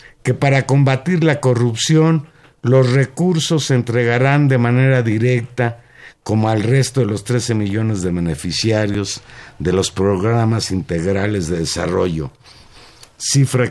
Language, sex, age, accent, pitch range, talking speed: Spanish, male, 50-69, Mexican, 105-135 Hz, 125 wpm